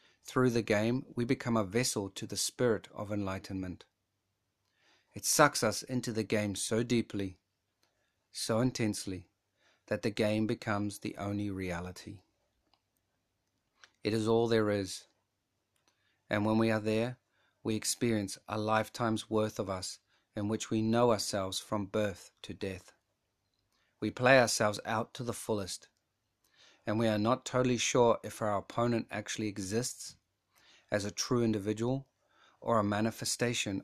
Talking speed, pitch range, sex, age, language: 140 wpm, 100-120 Hz, male, 40-59, English